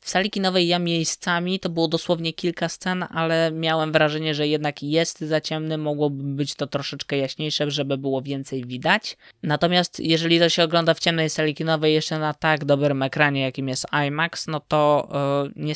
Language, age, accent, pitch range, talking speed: Polish, 20-39, native, 140-165 Hz, 180 wpm